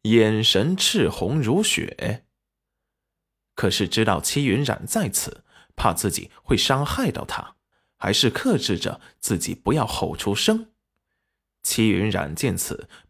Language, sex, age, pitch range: Chinese, male, 20-39, 95-140 Hz